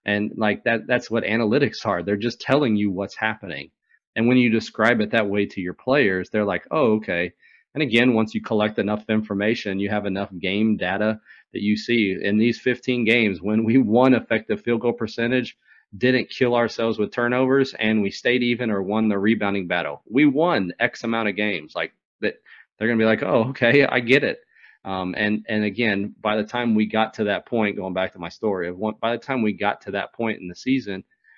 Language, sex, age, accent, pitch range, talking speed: English, male, 40-59, American, 100-115 Hz, 215 wpm